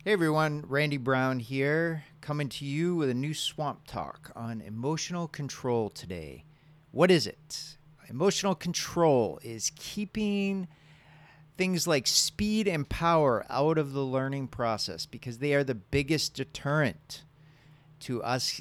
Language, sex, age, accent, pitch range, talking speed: English, male, 40-59, American, 135-155 Hz, 135 wpm